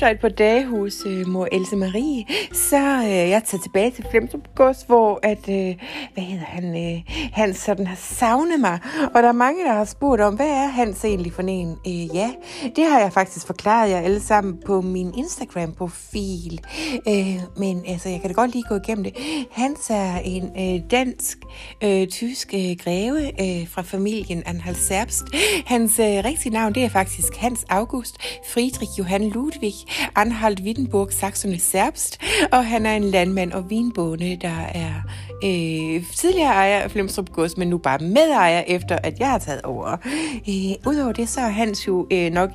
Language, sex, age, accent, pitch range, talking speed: Danish, female, 60-79, native, 185-245 Hz, 180 wpm